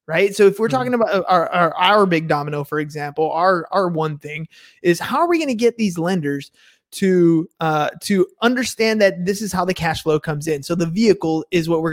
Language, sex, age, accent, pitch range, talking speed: English, male, 20-39, American, 165-200 Hz, 225 wpm